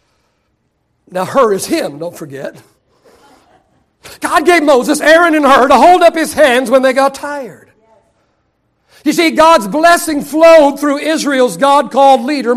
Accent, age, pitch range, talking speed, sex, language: American, 60-79, 260-320 Hz, 145 wpm, male, English